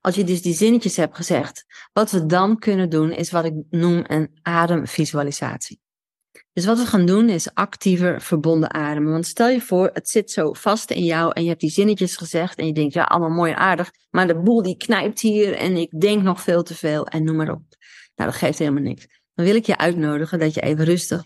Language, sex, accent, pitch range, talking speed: Dutch, female, Dutch, 160-185 Hz, 230 wpm